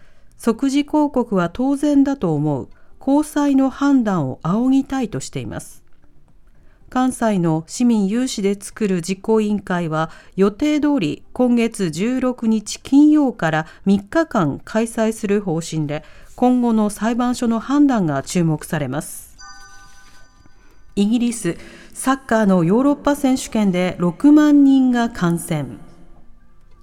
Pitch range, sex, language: 185-265 Hz, female, Japanese